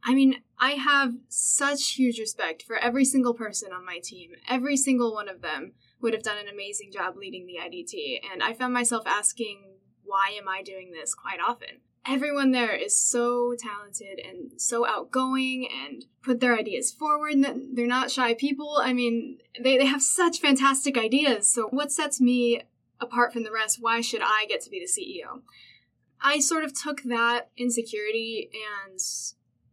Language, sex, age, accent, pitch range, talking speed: English, female, 10-29, American, 220-260 Hz, 180 wpm